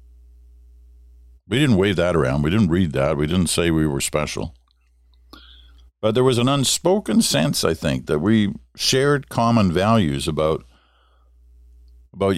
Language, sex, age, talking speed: English, male, 50-69, 145 wpm